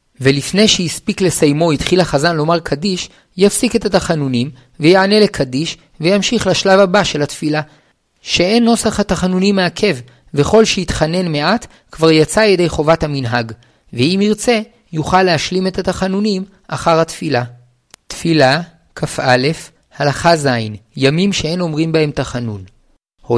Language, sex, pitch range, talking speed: Hebrew, male, 140-180 Hz, 120 wpm